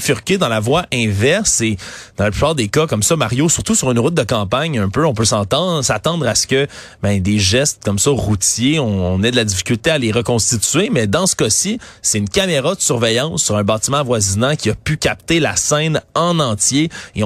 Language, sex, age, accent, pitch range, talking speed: French, male, 30-49, Canadian, 110-155 Hz, 230 wpm